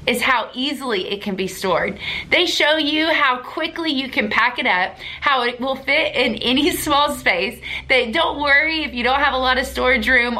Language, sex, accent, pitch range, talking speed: English, female, American, 230-310 Hz, 215 wpm